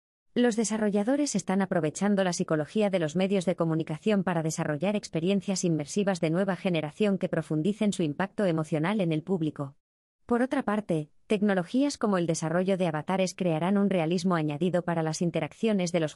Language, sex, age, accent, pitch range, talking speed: Spanish, female, 20-39, Spanish, 160-210 Hz, 165 wpm